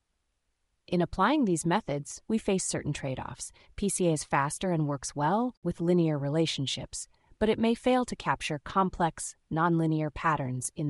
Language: English